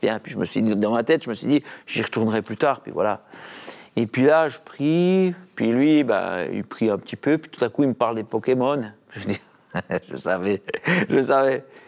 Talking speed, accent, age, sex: 235 wpm, French, 50-69, male